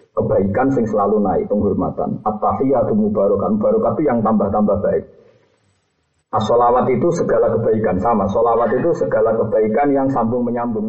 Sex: male